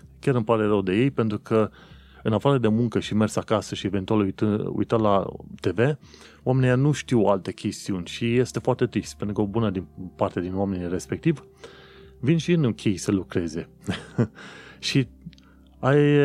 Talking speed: 170 wpm